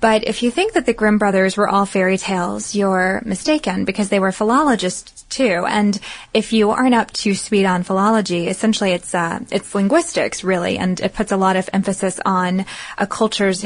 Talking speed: 200 wpm